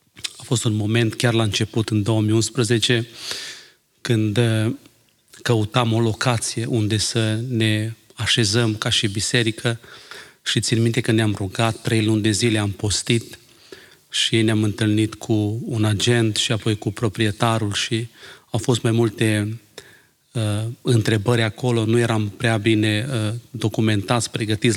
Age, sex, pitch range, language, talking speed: 30-49, male, 105-115 Hz, Romanian, 135 wpm